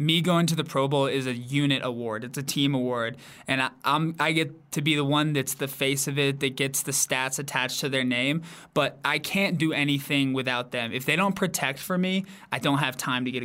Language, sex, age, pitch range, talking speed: English, male, 20-39, 130-155 Hz, 245 wpm